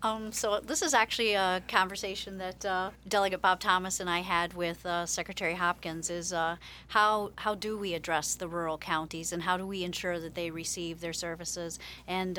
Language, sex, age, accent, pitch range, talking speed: English, female, 40-59, American, 170-185 Hz, 195 wpm